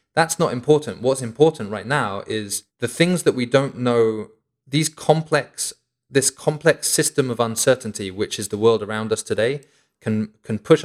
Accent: British